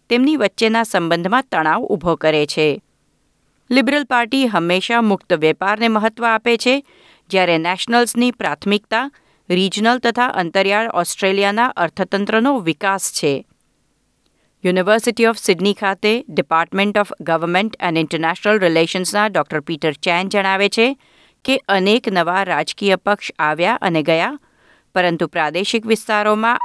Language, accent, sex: Gujarati, native, female